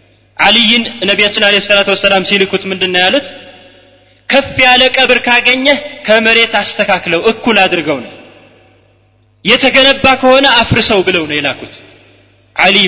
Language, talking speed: Amharic, 115 wpm